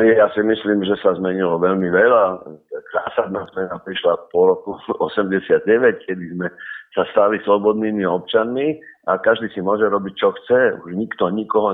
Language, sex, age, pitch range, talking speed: Slovak, male, 60-79, 95-125 Hz, 155 wpm